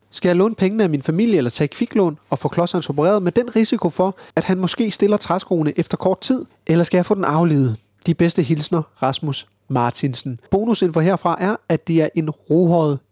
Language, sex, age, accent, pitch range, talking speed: Danish, male, 30-49, native, 130-165 Hz, 210 wpm